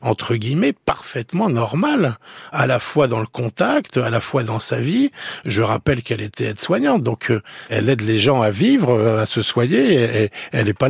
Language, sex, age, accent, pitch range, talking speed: French, male, 50-69, French, 115-145 Hz, 195 wpm